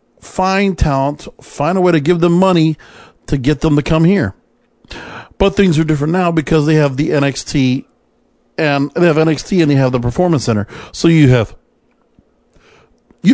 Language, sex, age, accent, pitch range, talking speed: English, male, 50-69, American, 135-180 Hz, 170 wpm